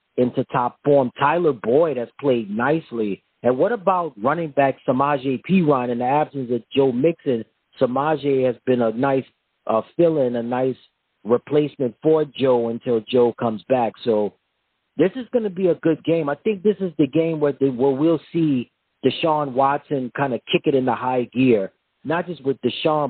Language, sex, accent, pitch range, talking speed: English, male, American, 120-145 Hz, 180 wpm